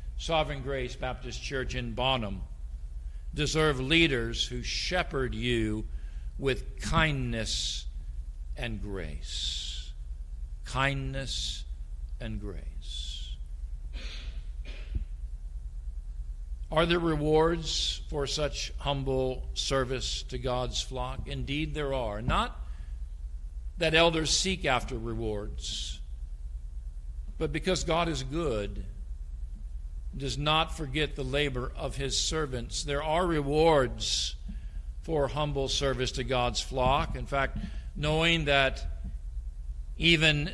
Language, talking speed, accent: English, 95 wpm, American